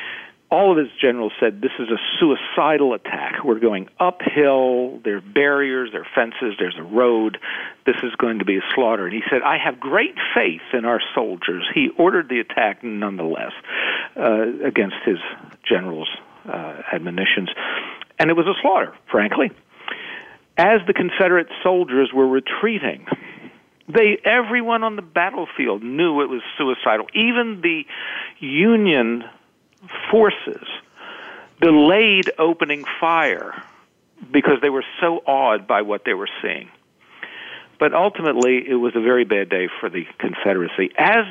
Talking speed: 145 wpm